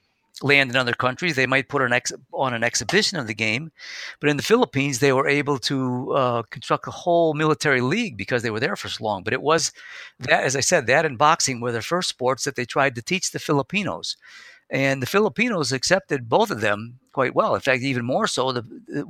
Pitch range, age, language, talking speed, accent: 115-145 Hz, 50-69, English, 230 wpm, American